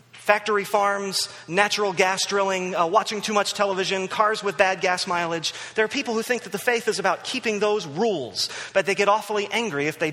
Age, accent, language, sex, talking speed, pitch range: 30-49, American, English, male, 205 wpm, 155-215 Hz